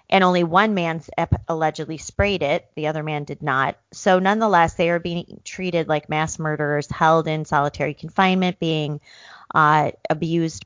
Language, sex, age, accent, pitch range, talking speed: English, female, 40-59, American, 145-170 Hz, 160 wpm